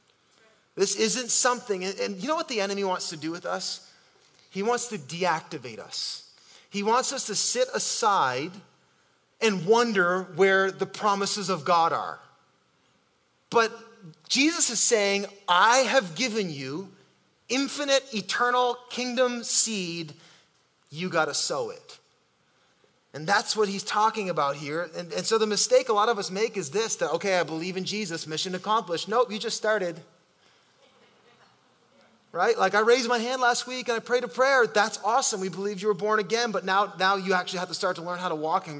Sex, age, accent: male, 30-49, American